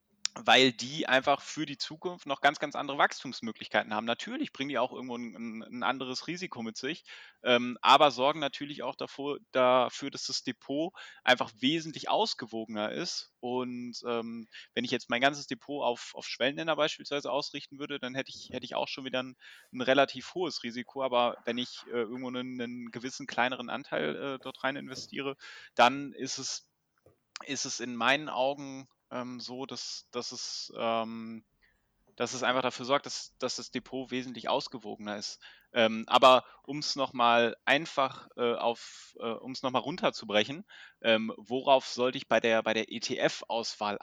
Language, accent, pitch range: German, German, 120-140 Hz